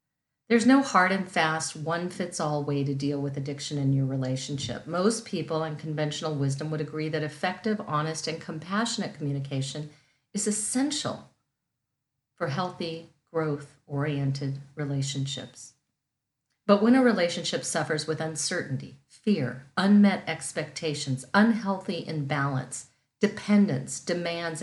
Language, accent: English, American